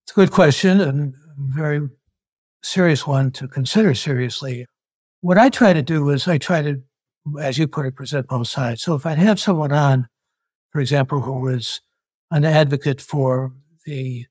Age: 60-79